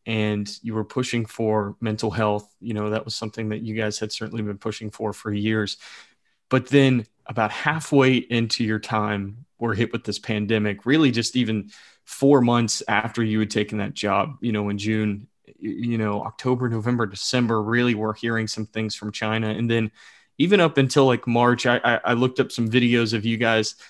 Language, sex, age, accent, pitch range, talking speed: English, male, 20-39, American, 110-130 Hz, 195 wpm